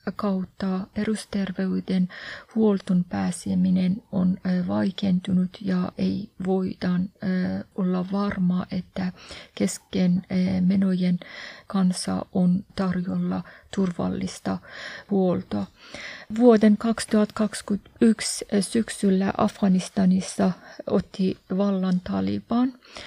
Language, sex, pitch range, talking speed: Finnish, female, 185-205 Hz, 70 wpm